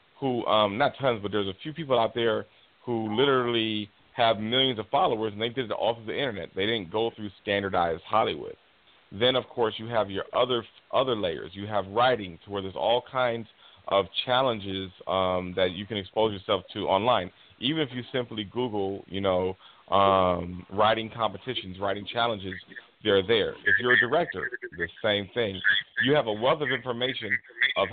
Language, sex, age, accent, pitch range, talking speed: English, male, 40-59, American, 100-120 Hz, 185 wpm